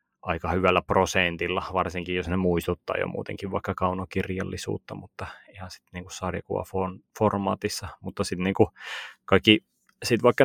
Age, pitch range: 30-49, 85-95 Hz